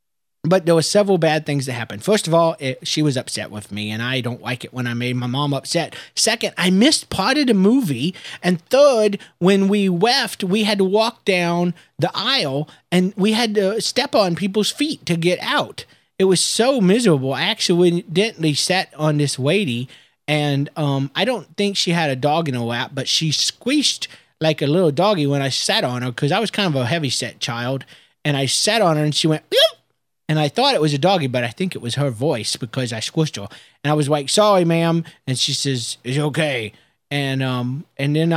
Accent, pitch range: American, 135-185 Hz